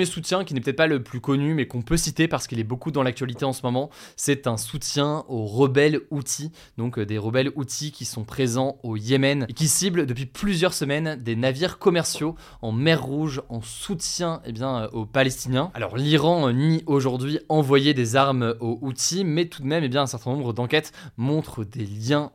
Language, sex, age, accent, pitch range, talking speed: French, male, 20-39, French, 120-145 Hz, 205 wpm